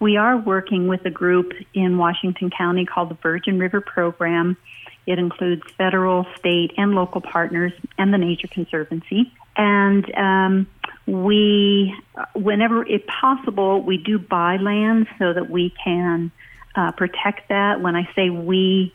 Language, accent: English, American